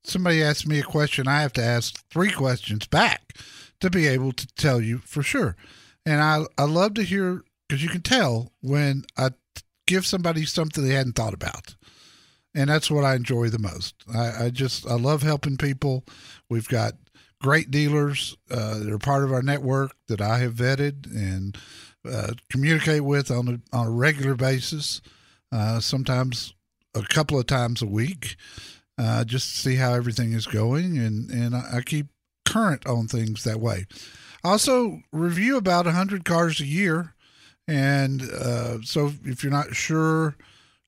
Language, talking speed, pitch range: English, 170 wpm, 120-150 Hz